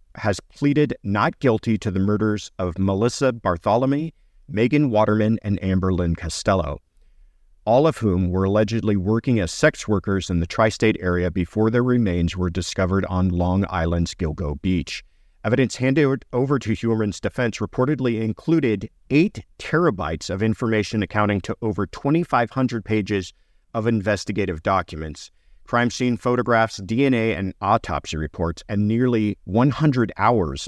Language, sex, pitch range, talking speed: English, male, 90-120 Hz, 135 wpm